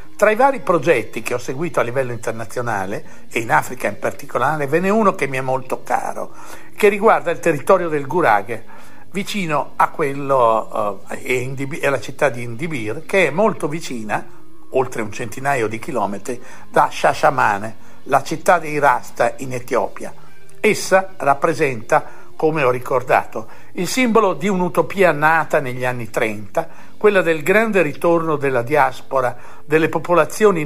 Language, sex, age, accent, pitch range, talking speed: Italian, male, 60-79, native, 130-180 Hz, 150 wpm